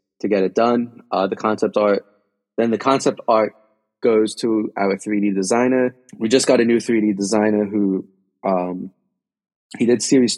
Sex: male